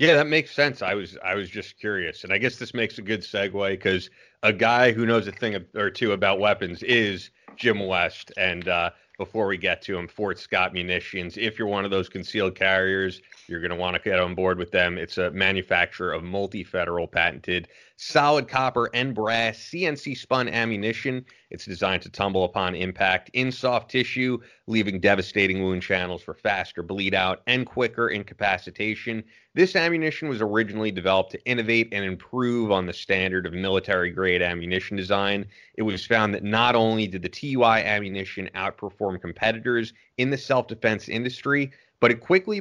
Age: 30-49